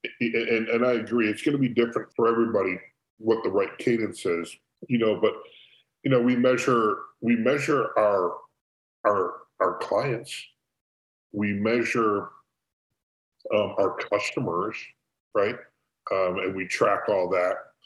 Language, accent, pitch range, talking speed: English, American, 105-135 Hz, 140 wpm